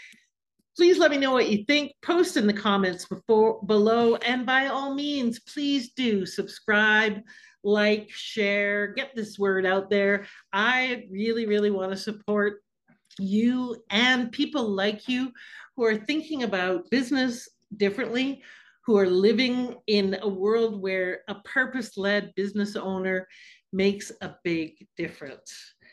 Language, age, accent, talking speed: English, 40-59, American, 135 wpm